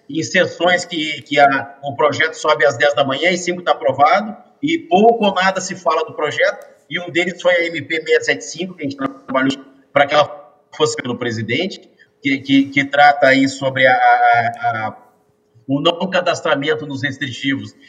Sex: male